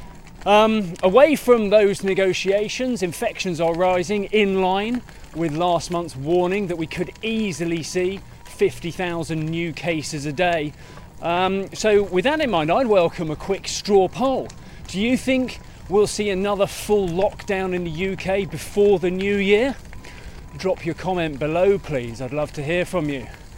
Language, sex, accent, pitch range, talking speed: English, male, British, 155-200 Hz, 160 wpm